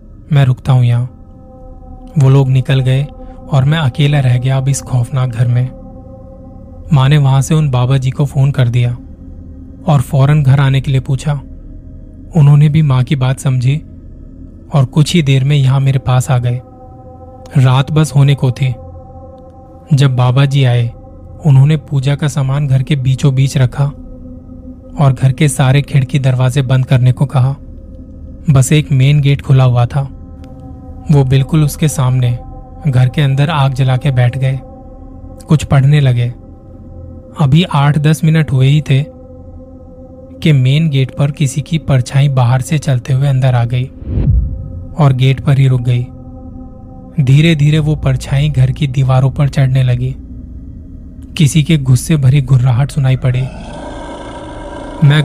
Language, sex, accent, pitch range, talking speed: Hindi, male, native, 120-145 Hz, 160 wpm